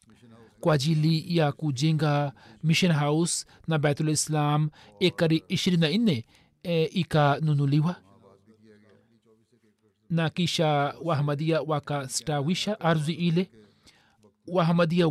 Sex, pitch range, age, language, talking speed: male, 145-170 Hz, 40-59, Swahili, 70 wpm